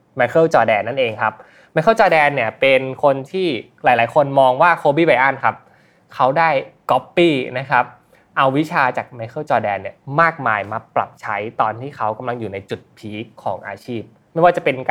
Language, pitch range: Thai, 115-160 Hz